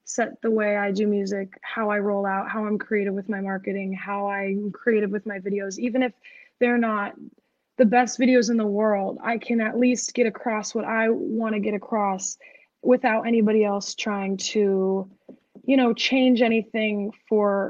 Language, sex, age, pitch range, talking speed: English, female, 20-39, 205-250 Hz, 185 wpm